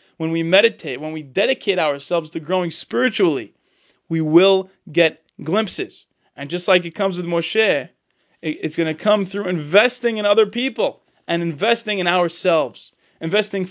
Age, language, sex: 20-39, English, male